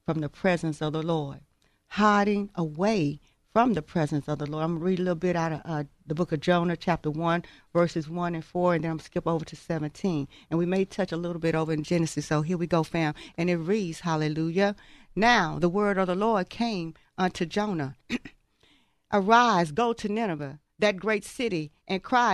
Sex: female